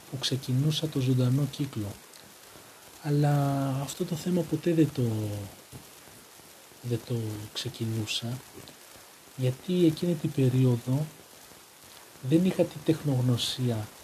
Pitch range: 125-155 Hz